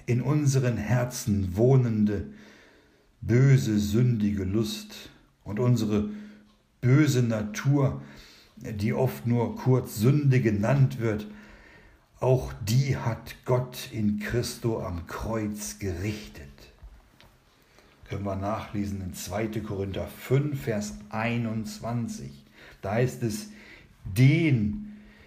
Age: 60-79